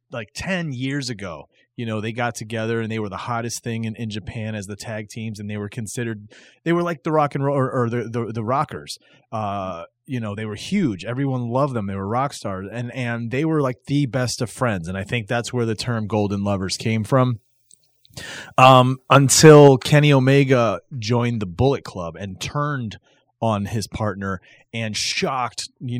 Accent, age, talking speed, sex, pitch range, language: American, 30-49, 205 wpm, male, 110-135 Hz, English